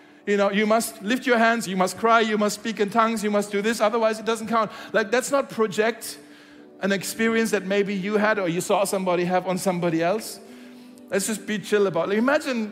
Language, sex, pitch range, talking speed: German, male, 185-235 Hz, 230 wpm